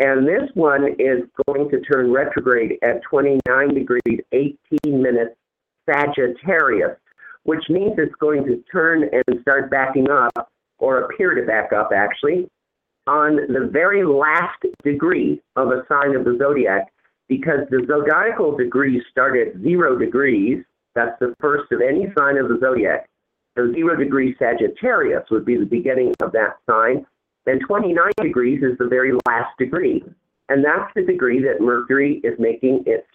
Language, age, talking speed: English, 50-69, 155 wpm